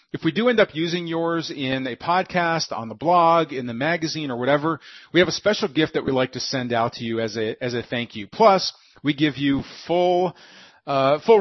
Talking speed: 230 wpm